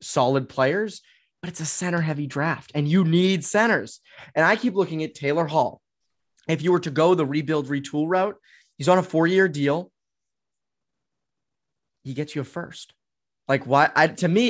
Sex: male